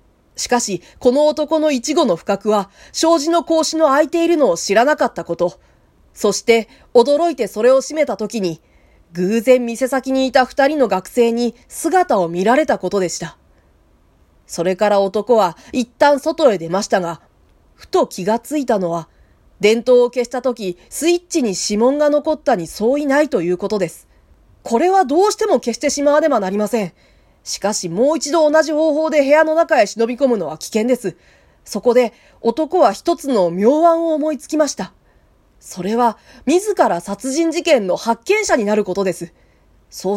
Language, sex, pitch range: Japanese, female, 195-305 Hz